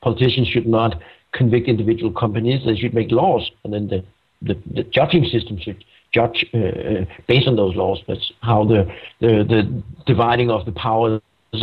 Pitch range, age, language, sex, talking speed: 110-130 Hz, 60-79, English, male, 170 wpm